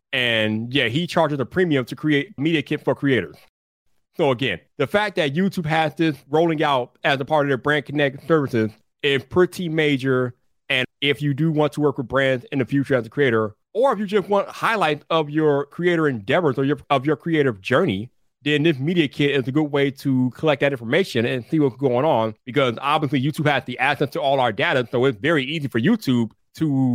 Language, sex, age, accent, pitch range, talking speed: English, male, 30-49, American, 130-175 Hz, 220 wpm